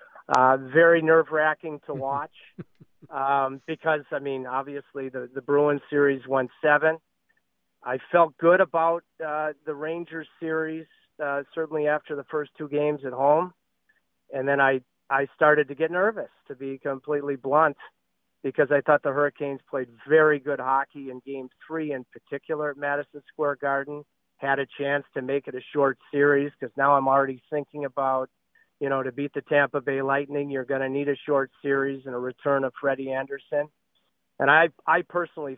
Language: English